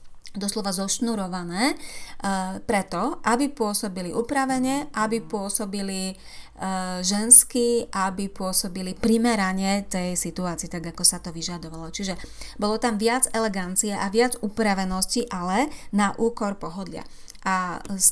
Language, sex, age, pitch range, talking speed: Slovak, female, 30-49, 190-230 Hz, 115 wpm